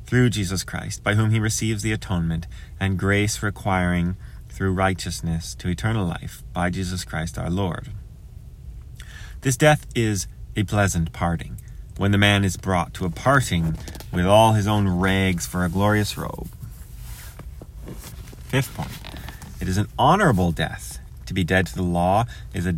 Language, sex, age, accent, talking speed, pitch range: English, male, 30-49, American, 160 wpm, 90-110 Hz